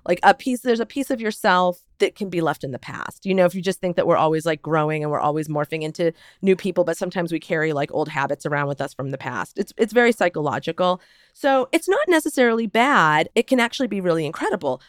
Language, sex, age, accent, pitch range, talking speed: English, female, 40-59, American, 165-245 Hz, 245 wpm